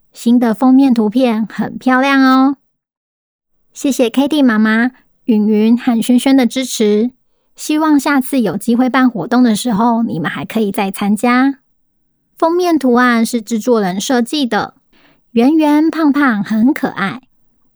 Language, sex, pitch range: Chinese, male, 225-275 Hz